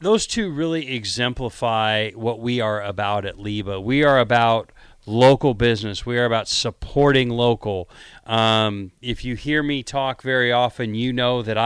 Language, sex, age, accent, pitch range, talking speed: English, male, 40-59, American, 110-130 Hz, 160 wpm